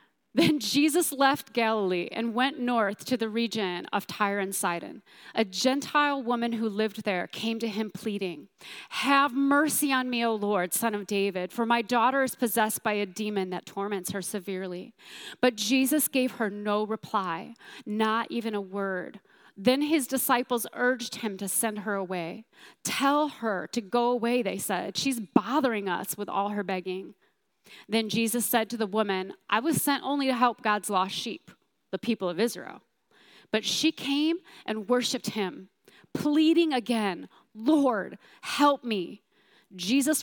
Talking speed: 165 wpm